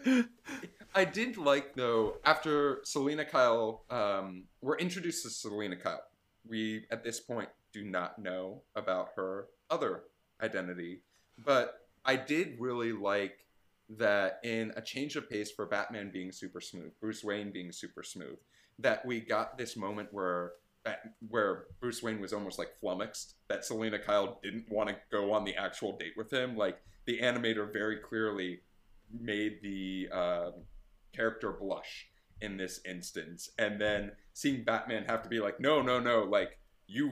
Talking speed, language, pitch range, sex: 155 wpm, English, 95-130 Hz, male